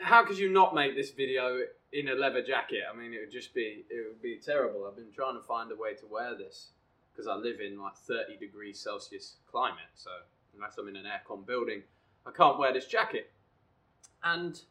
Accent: British